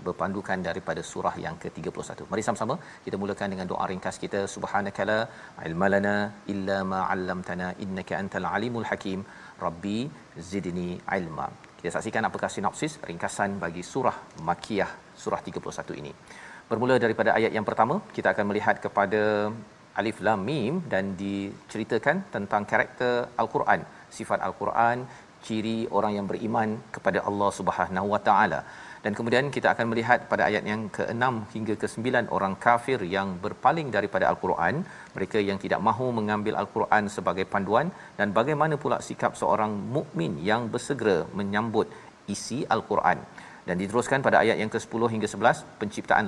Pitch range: 100-120 Hz